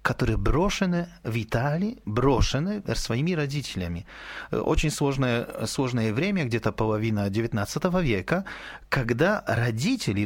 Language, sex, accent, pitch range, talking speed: Russian, male, native, 115-175 Hz, 100 wpm